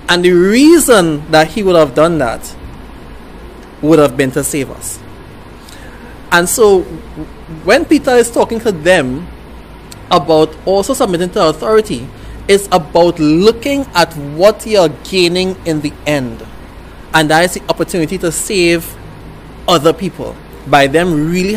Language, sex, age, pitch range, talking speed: English, male, 30-49, 130-185 Hz, 140 wpm